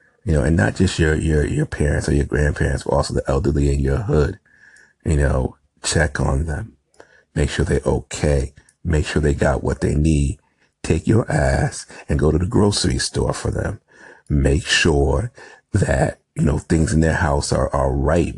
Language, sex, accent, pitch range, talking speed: English, male, American, 70-80 Hz, 190 wpm